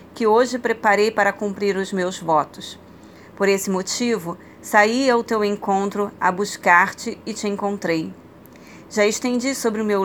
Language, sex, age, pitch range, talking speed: Portuguese, female, 30-49, 185-205 Hz, 150 wpm